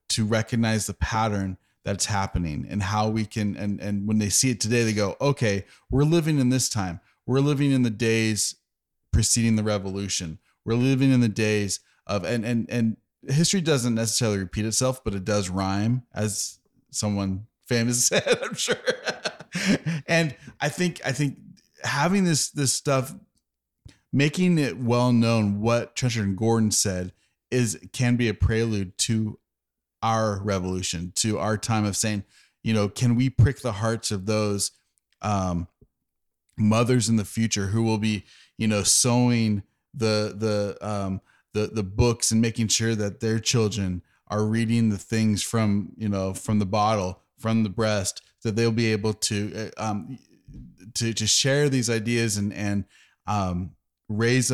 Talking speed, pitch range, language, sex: 165 wpm, 100-120 Hz, English, male